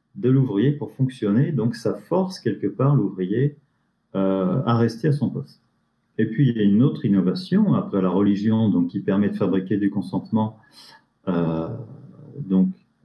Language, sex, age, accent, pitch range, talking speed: French, male, 40-59, French, 100-135 Hz, 165 wpm